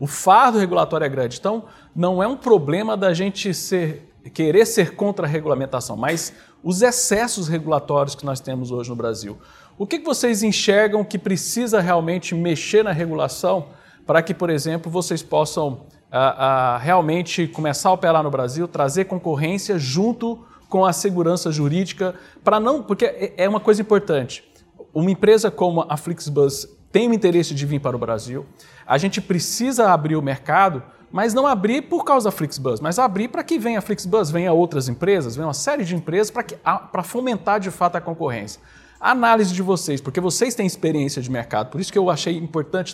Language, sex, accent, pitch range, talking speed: Portuguese, male, Brazilian, 150-205 Hz, 180 wpm